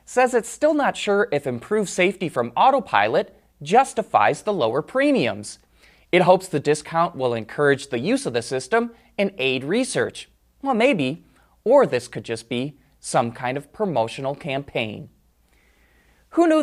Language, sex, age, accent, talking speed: English, male, 20-39, American, 150 wpm